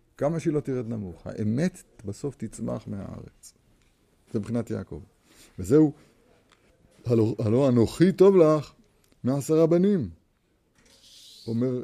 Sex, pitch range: male, 105-130 Hz